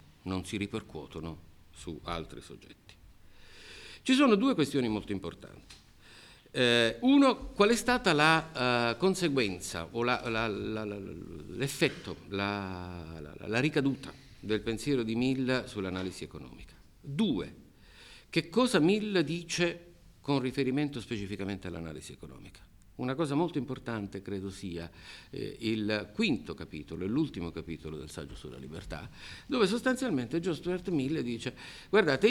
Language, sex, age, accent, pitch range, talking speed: Italian, male, 50-69, native, 90-150 Hz, 120 wpm